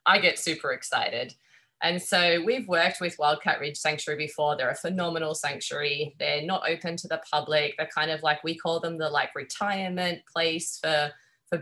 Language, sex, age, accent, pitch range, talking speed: English, female, 20-39, Australian, 150-175 Hz, 185 wpm